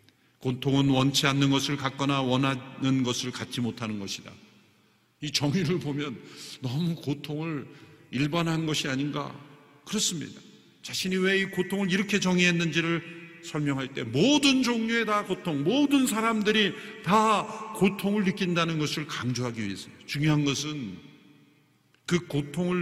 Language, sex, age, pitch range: Korean, male, 50-69, 120-165 Hz